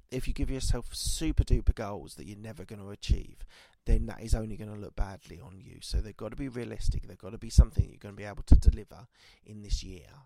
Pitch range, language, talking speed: 90-110 Hz, English, 255 wpm